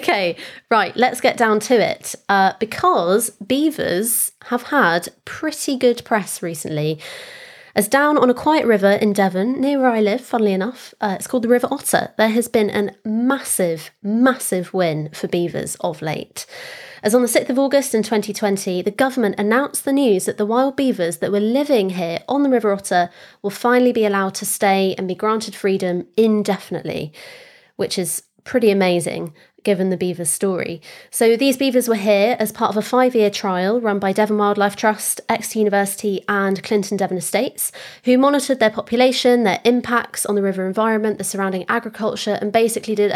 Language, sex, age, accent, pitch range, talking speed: English, female, 20-39, British, 195-245 Hz, 180 wpm